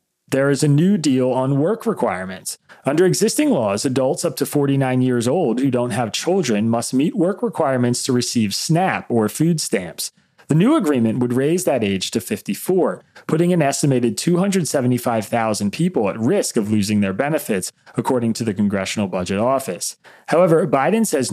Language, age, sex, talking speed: English, 30-49, male, 170 wpm